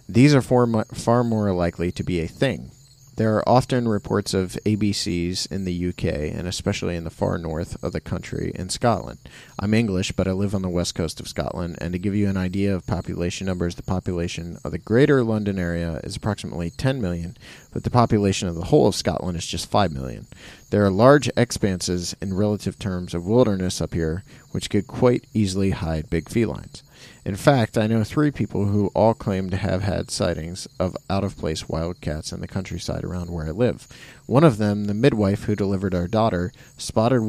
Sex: male